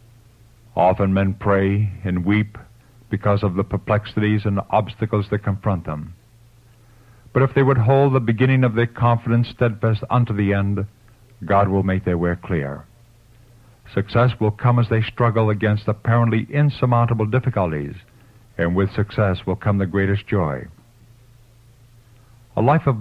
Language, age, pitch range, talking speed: English, 50-69, 100-120 Hz, 145 wpm